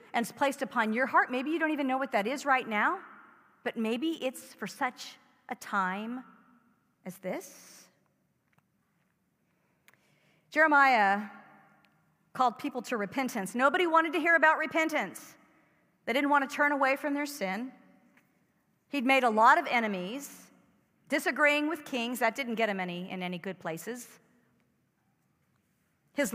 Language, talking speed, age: English, 145 wpm, 50-69